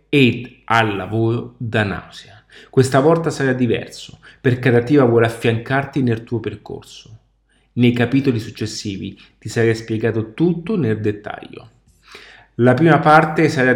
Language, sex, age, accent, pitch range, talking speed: Italian, male, 30-49, native, 110-140 Hz, 125 wpm